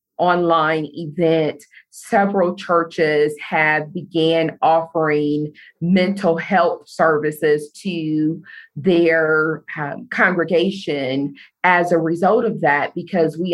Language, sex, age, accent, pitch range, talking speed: English, female, 40-59, American, 150-170 Hz, 95 wpm